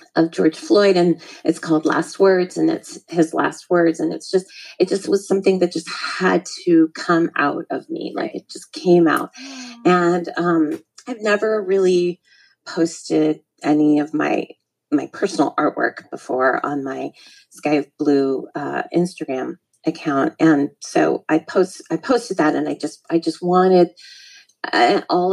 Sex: female